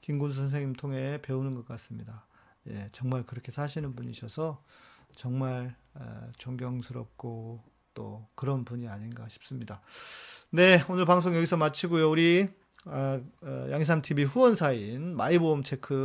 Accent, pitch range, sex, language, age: native, 120-160 Hz, male, Korean, 40-59